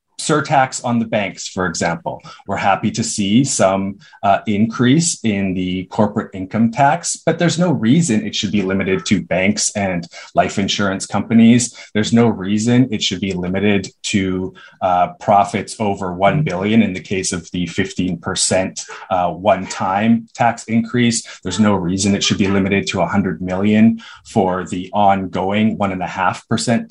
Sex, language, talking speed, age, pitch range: male, English, 155 wpm, 20-39, 100-120 Hz